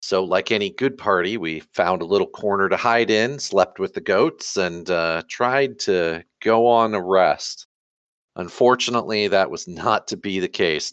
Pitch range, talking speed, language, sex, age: 95-155 Hz, 180 wpm, English, male, 40-59